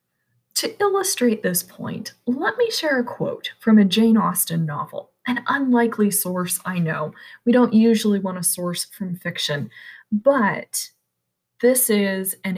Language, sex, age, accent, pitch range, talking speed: English, female, 20-39, American, 185-245 Hz, 150 wpm